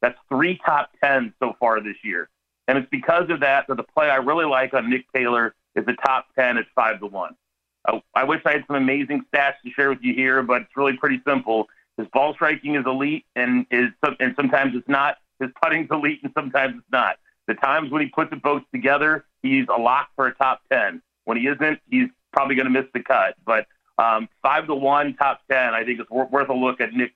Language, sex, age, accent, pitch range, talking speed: English, male, 40-59, American, 125-150 Hz, 230 wpm